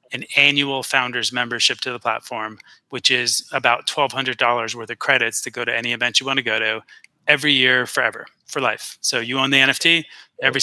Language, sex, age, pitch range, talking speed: English, male, 30-49, 120-140 Hz, 200 wpm